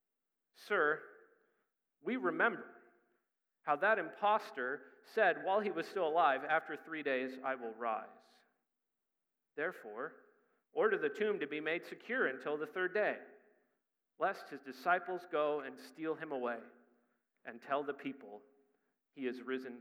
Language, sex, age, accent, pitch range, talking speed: English, male, 40-59, American, 125-170 Hz, 135 wpm